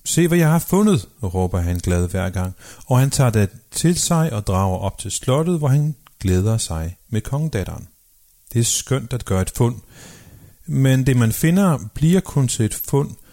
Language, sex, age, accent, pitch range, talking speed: Danish, male, 40-59, native, 95-135 Hz, 195 wpm